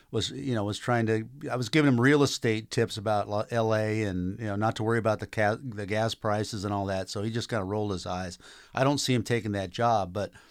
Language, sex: English, male